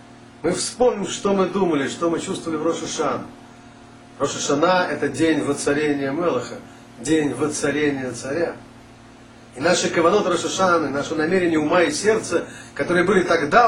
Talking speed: 135 wpm